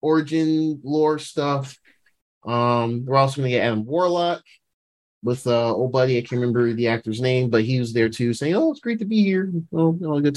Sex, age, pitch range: male, 30-49, 120-155 Hz